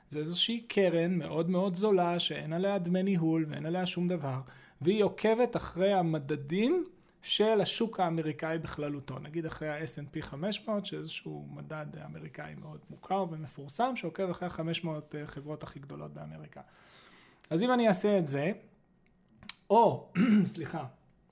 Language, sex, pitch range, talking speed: Hebrew, male, 155-190 Hz, 130 wpm